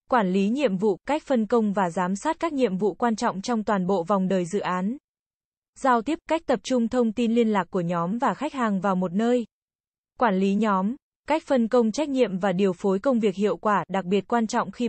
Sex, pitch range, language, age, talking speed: female, 195-245 Hz, Vietnamese, 10-29, 240 wpm